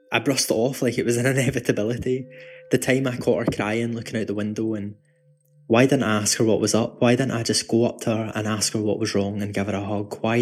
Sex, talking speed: male, 275 wpm